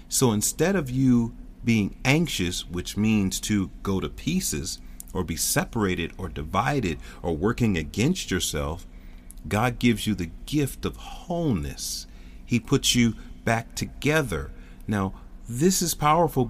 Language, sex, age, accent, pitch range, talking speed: English, male, 40-59, American, 90-135 Hz, 135 wpm